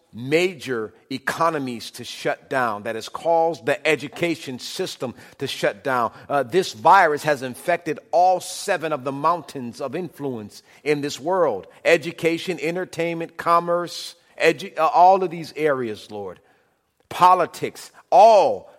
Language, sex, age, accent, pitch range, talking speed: English, male, 50-69, American, 125-175 Hz, 130 wpm